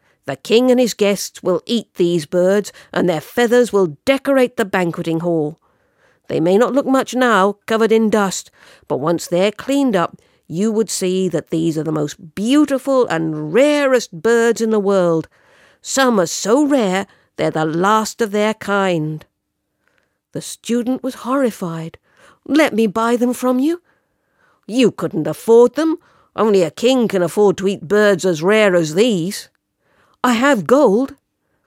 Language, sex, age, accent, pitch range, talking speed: English, female, 50-69, British, 175-235 Hz, 160 wpm